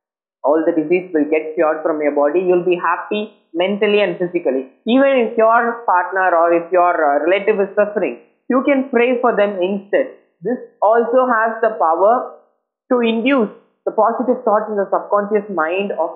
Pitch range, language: 175-230 Hz, Tamil